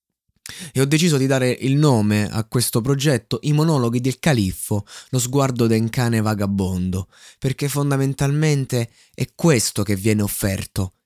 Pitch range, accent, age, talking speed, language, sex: 100-125 Hz, native, 20-39, 140 wpm, Italian, male